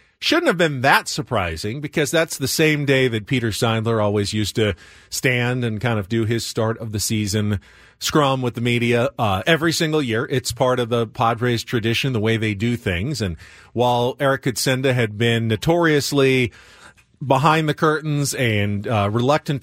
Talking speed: 175 wpm